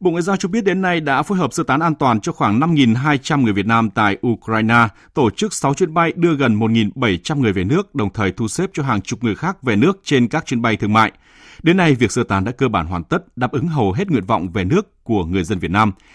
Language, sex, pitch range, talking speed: Vietnamese, male, 105-140 Hz, 270 wpm